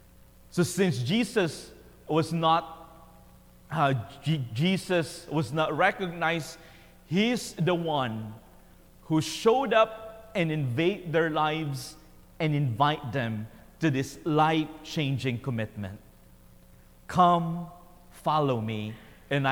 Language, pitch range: English, 120-175 Hz